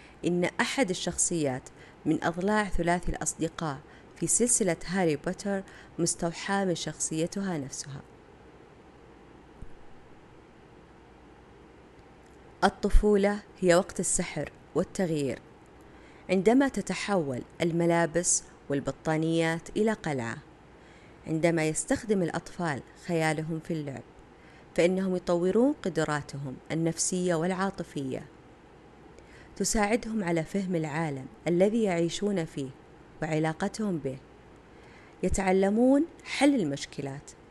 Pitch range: 155-195 Hz